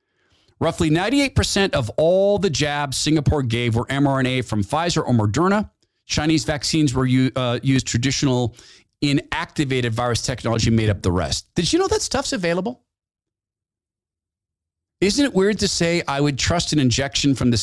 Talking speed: 155 wpm